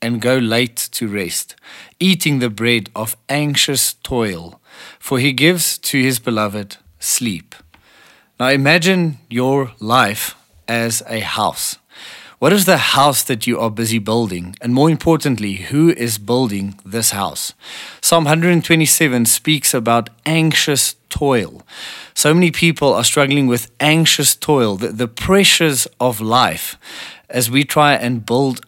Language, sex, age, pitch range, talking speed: English, male, 30-49, 115-145 Hz, 135 wpm